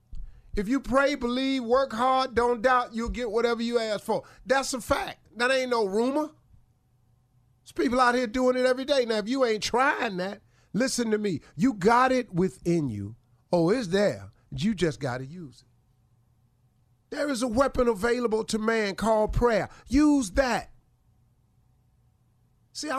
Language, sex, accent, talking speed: English, male, American, 165 wpm